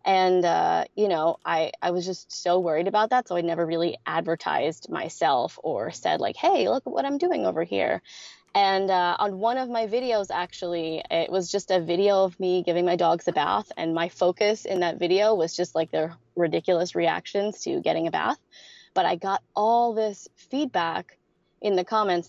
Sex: female